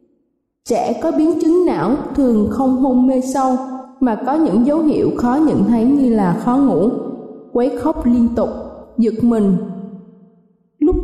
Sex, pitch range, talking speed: female, 230-285 Hz, 160 wpm